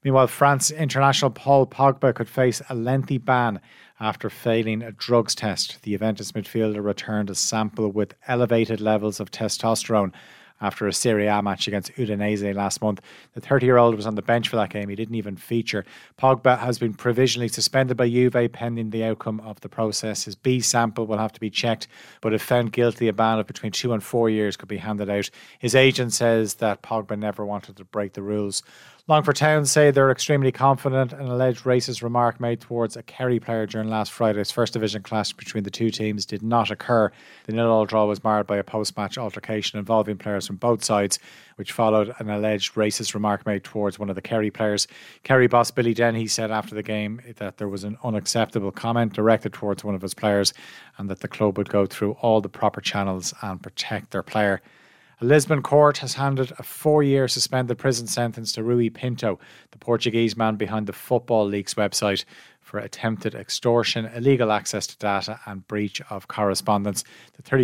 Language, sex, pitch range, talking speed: English, male, 105-120 Hz, 195 wpm